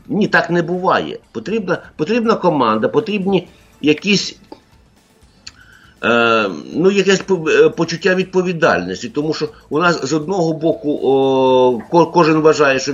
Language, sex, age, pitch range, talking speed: English, male, 60-79, 145-185 Hz, 105 wpm